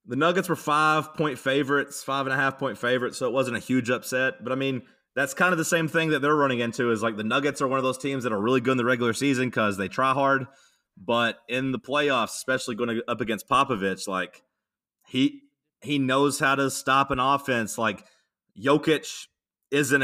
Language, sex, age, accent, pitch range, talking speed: English, male, 30-49, American, 110-140 Hz, 205 wpm